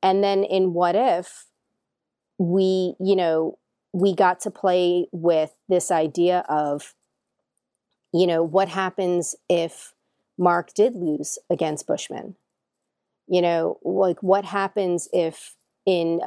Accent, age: American, 40-59